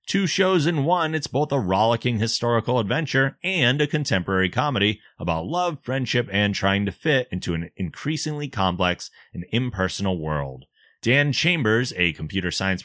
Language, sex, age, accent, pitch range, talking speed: English, male, 30-49, American, 100-145 Hz, 155 wpm